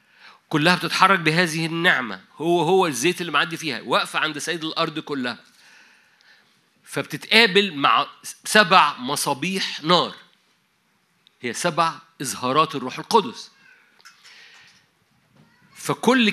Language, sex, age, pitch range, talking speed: Arabic, male, 50-69, 150-195 Hz, 95 wpm